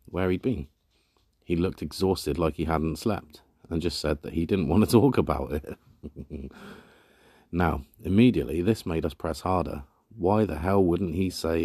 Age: 30-49